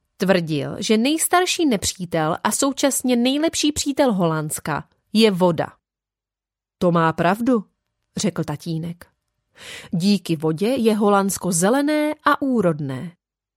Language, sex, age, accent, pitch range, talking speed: Czech, female, 30-49, native, 165-250 Hz, 100 wpm